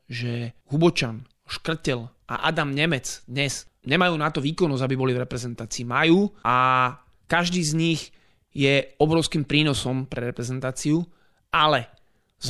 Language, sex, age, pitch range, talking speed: Slovak, male, 30-49, 135-160 Hz, 130 wpm